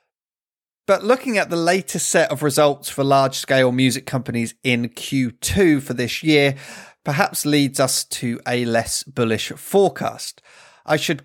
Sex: male